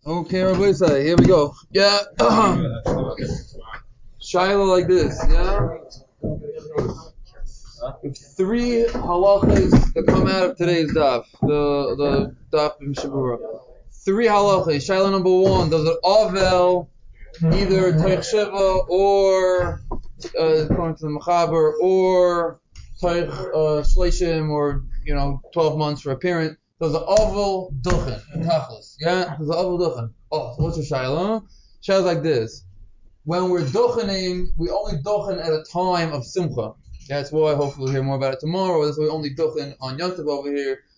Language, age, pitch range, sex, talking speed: English, 20-39, 150-185 Hz, male, 150 wpm